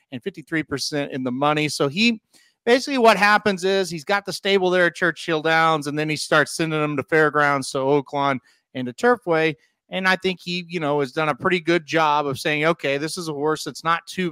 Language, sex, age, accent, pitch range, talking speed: English, male, 30-49, American, 145-175 Hz, 225 wpm